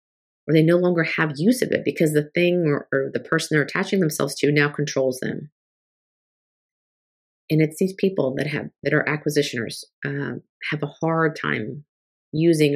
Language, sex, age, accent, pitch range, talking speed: English, female, 30-49, American, 145-170 Hz, 175 wpm